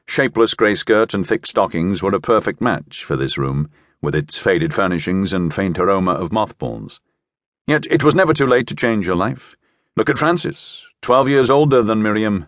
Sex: male